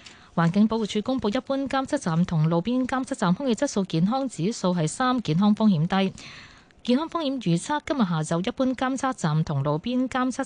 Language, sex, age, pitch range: Chinese, female, 20-39, 165-250 Hz